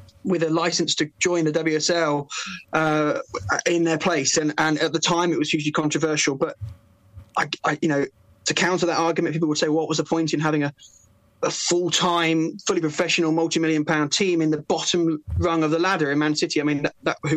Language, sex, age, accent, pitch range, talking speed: English, male, 20-39, British, 150-165 Hz, 205 wpm